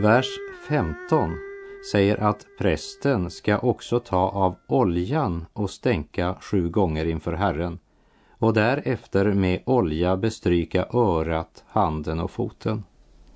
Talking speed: 110 wpm